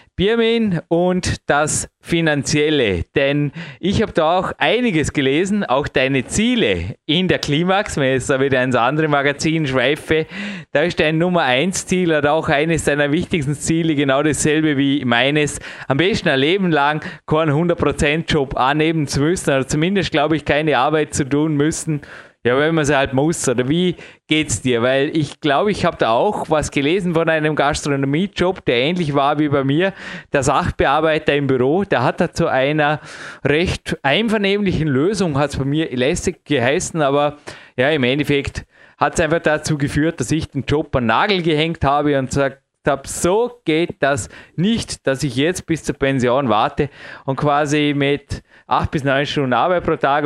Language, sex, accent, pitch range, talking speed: German, male, Austrian, 135-165 Hz, 180 wpm